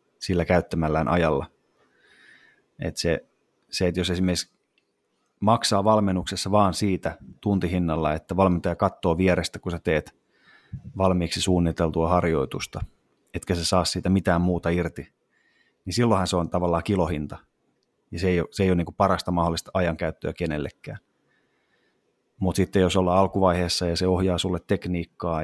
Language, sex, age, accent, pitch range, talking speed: Finnish, male, 30-49, native, 85-95 Hz, 135 wpm